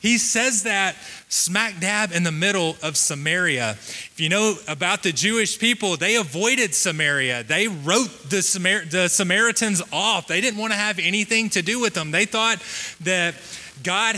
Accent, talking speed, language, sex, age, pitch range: American, 170 wpm, English, male, 30-49, 165-210 Hz